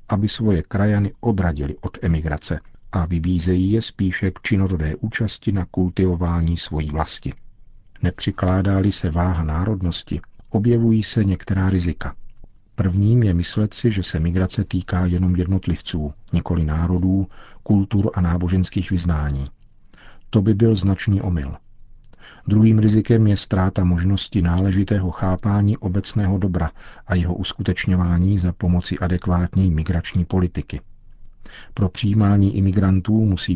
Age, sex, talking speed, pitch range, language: 50-69, male, 120 wpm, 85-105 Hz, Czech